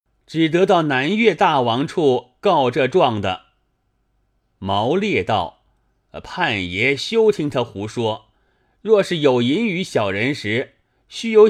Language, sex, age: Chinese, male, 30-49